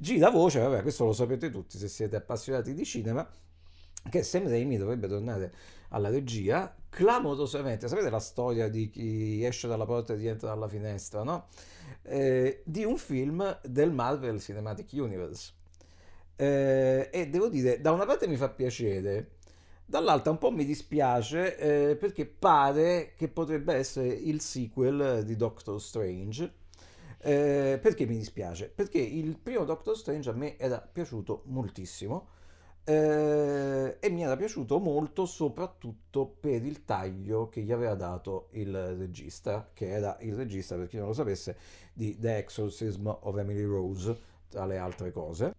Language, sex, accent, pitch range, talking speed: Italian, male, native, 95-140 Hz, 155 wpm